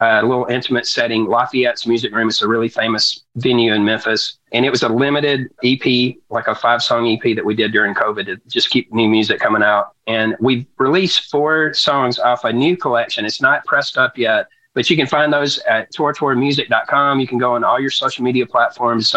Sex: male